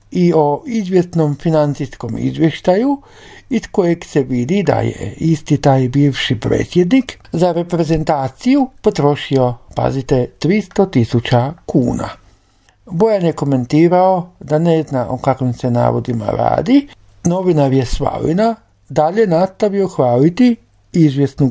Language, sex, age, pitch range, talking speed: Croatian, male, 60-79, 130-195 Hz, 110 wpm